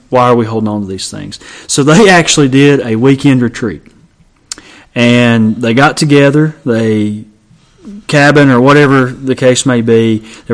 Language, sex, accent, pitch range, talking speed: English, male, American, 115-140 Hz, 160 wpm